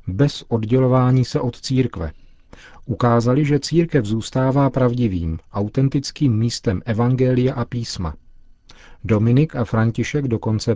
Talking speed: 105 wpm